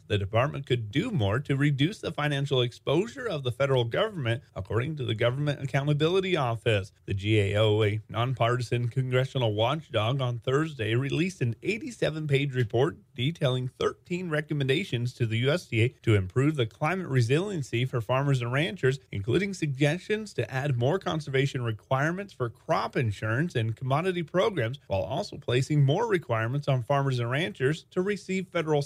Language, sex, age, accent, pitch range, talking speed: English, male, 30-49, American, 120-150 Hz, 150 wpm